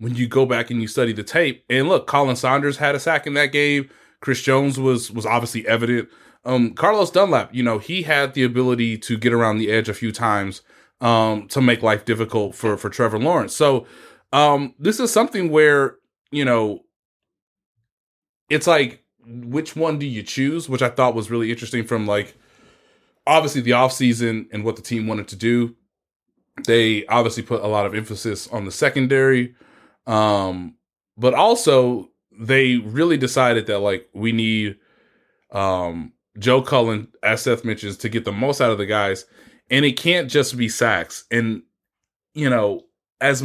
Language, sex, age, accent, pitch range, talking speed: English, male, 20-39, American, 110-135 Hz, 180 wpm